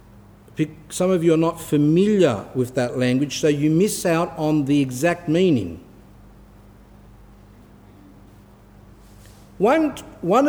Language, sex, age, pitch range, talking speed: English, male, 50-69, 115-185 Hz, 110 wpm